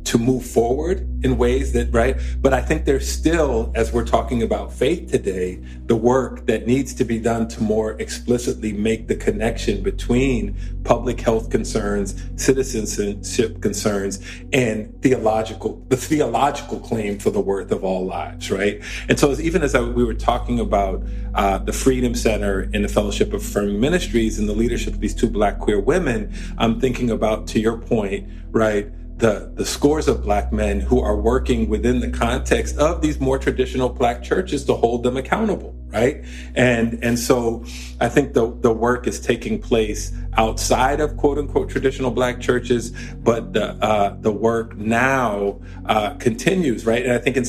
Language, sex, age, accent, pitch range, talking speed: English, male, 40-59, American, 100-120 Hz, 175 wpm